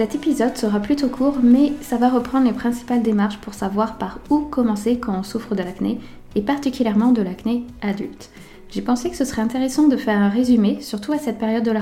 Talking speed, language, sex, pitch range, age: 220 wpm, French, female, 200-245 Hz, 20-39